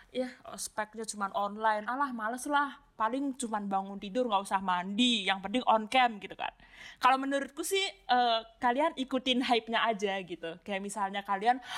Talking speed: 165 wpm